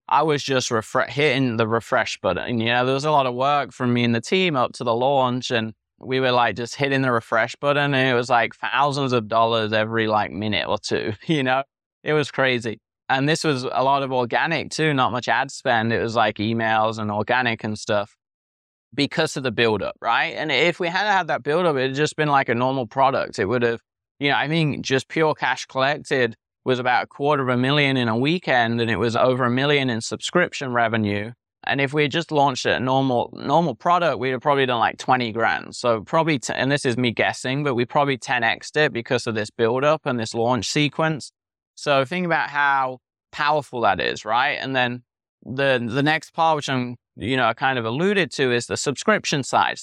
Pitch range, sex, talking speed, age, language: 115-145 Hz, male, 225 wpm, 20-39, English